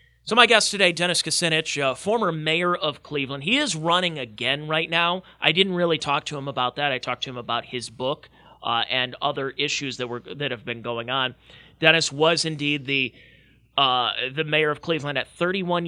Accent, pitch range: American, 125-155 Hz